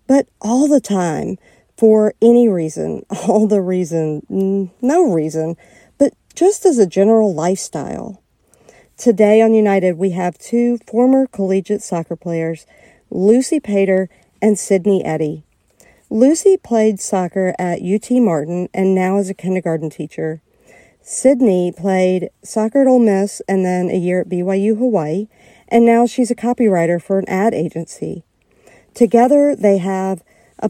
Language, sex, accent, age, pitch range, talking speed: English, female, American, 50-69, 185-235 Hz, 140 wpm